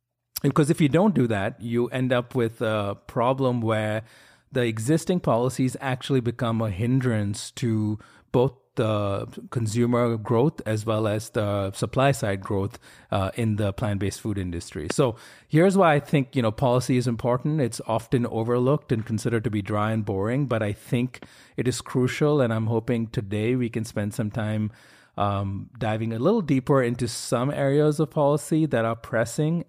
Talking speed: 175 wpm